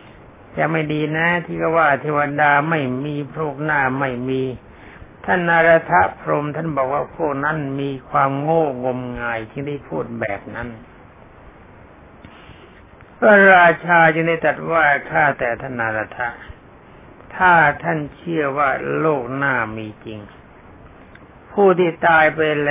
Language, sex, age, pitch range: Thai, male, 60-79, 130-165 Hz